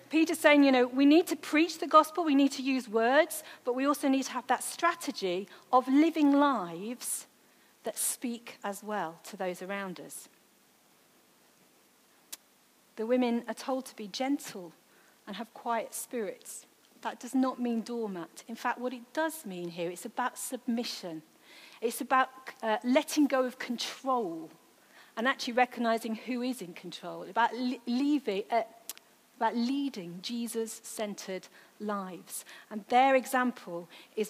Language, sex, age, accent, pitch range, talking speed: English, female, 40-59, British, 215-265 Hz, 150 wpm